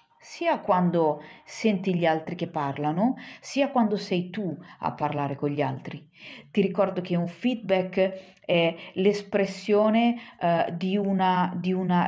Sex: female